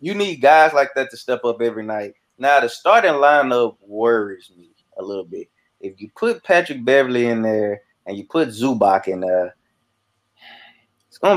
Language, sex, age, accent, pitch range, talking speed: English, male, 20-39, American, 110-130 Hz, 180 wpm